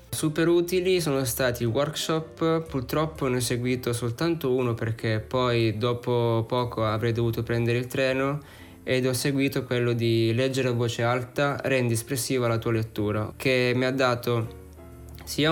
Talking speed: 155 wpm